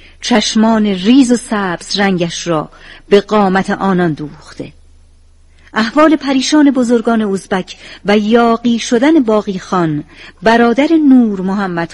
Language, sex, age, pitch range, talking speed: Persian, female, 50-69, 175-240 Hz, 110 wpm